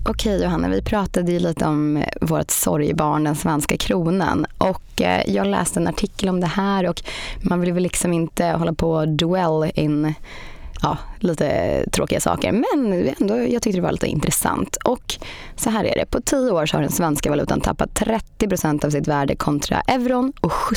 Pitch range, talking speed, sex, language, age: 155-200 Hz, 185 wpm, female, Swedish, 20-39